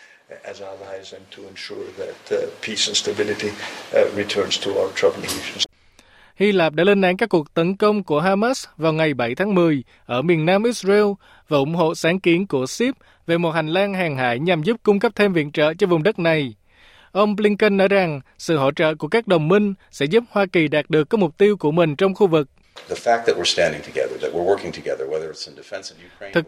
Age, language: 20-39, Vietnamese